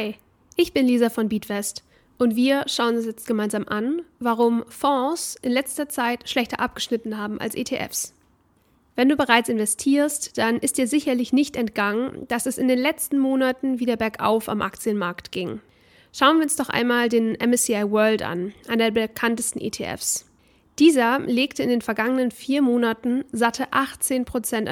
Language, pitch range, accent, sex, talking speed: German, 230-270 Hz, German, female, 160 wpm